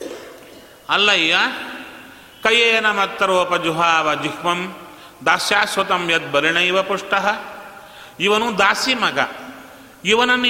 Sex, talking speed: male, 75 wpm